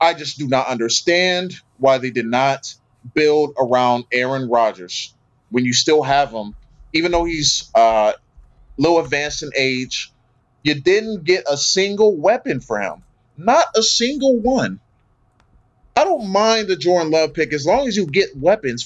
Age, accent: 30-49, American